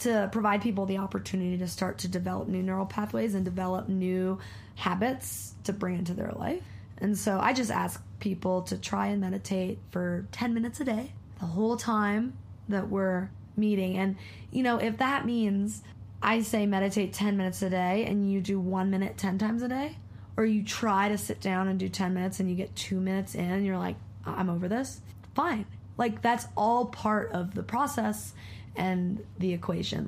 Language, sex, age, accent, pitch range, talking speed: English, female, 20-39, American, 180-215 Hz, 195 wpm